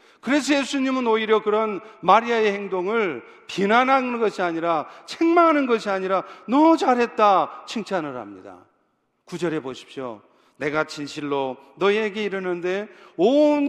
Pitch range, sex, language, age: 180-250 Hz, male, Korean, 40-59